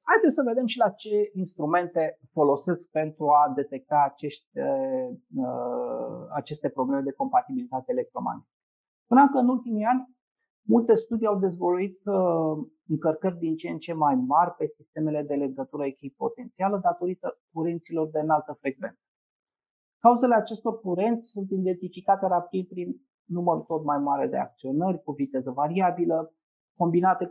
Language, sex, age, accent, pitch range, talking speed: Romanian, male, 30-49, native, 150-230 Hz, 135 wpm